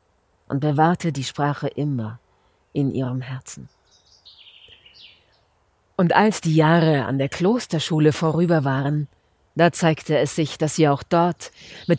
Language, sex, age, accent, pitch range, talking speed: German, female, 50-69, German, 130-195 Hz, 130 wpm